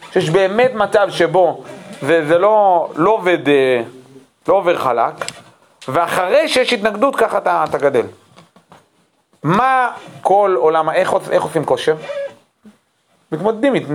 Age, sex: 30-49, male